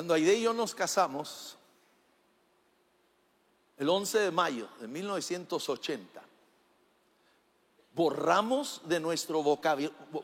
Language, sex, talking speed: English, male, 90 wpm